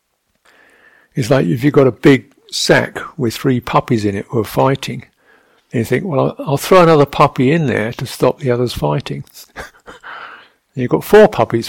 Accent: British